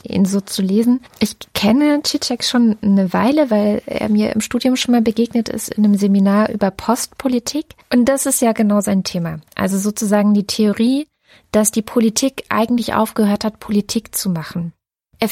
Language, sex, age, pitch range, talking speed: German, female, 20-39, 200-235 Hz, 175 wpm